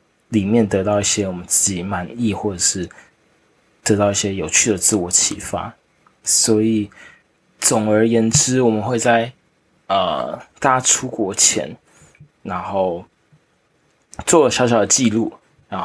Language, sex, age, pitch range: Chinese, male, 20-39, 100-115 Hz